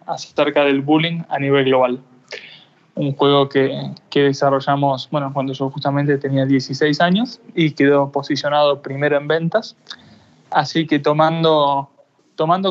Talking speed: 130 wpm